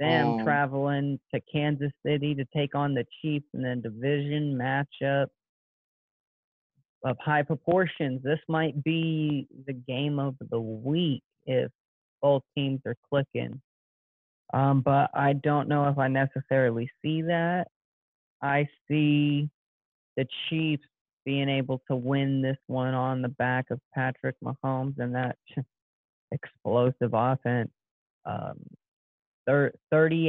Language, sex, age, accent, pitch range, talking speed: English, male, 30-49, American, 130-145 Hz, 120 wpm